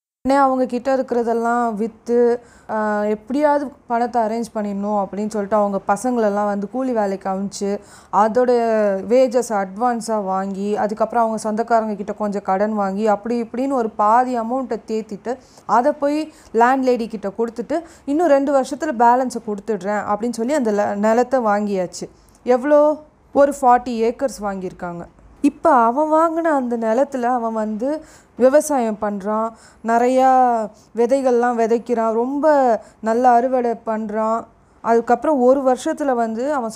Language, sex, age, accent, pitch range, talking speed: Tamil, female, 20-39, native, 210-255 Hz, 120 wpm